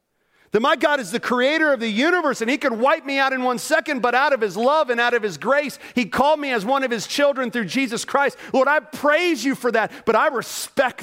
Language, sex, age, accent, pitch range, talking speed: English, male, 40-59, American, 125-190 Hz, 260 wpm